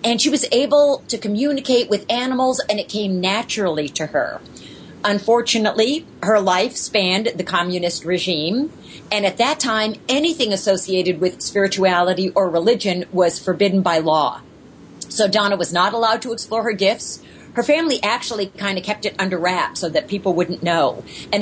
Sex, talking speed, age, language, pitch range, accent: female, 165 wpm, 40-59, English, 180-230 Hz, American